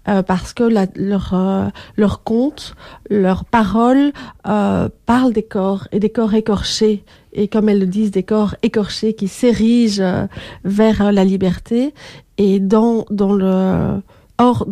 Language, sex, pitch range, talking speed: French, female, 190-215 Hz, 155 wpm